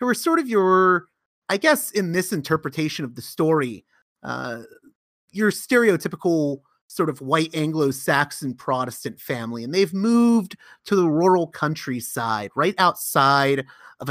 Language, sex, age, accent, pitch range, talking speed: English, male, 30-49, American, 135-200 Hz, 135 wpm